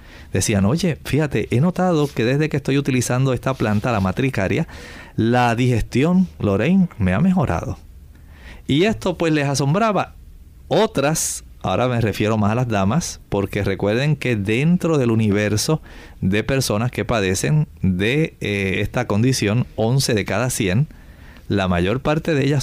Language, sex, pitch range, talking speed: Spanish, male, 100-145 Hz, 150 wpm